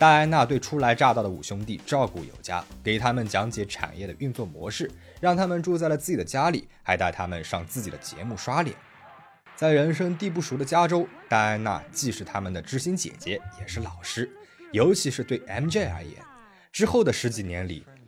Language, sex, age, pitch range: Chinese, male, 20-39, 95-150 Hz